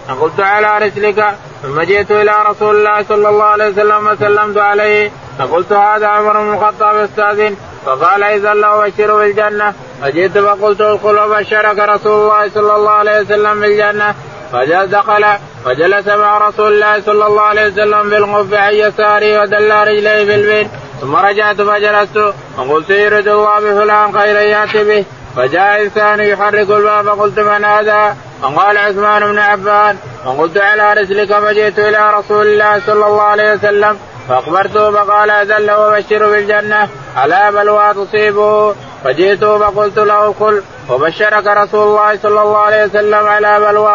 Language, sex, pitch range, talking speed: Arabic, male, 205-210 Hz, 140 wpm